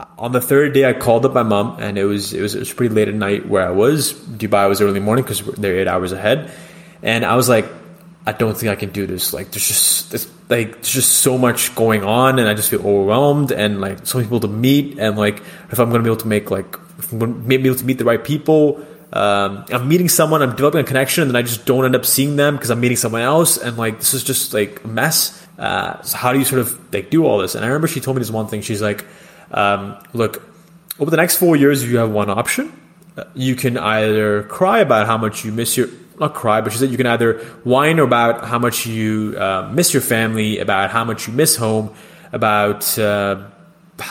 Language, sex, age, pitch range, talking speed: English, male, 20-39, 105-135 Hz, 250 wpm